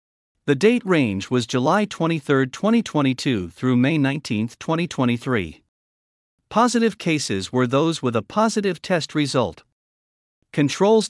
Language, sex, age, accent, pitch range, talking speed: English, male, 50-69, American, 115-175 Hz, 115 wpm